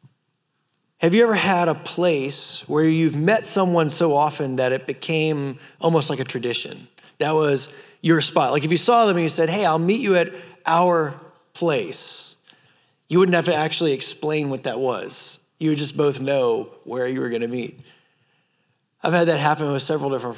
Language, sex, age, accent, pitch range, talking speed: English, male, 20-39, American, 140-175 Hz, 190 wpm